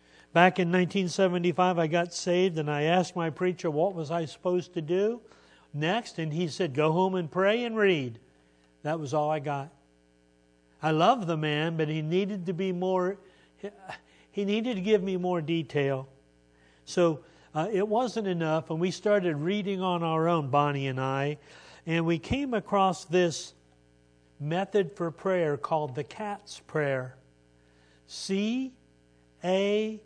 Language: English